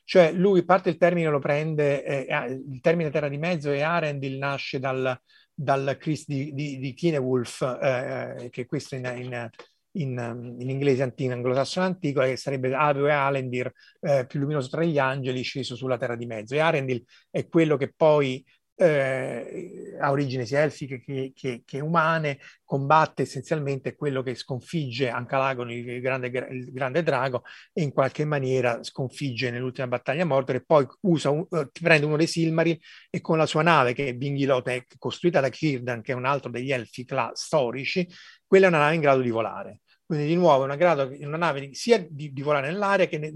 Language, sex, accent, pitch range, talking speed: Italian, male, native, 130-160 Hz, 185 wpm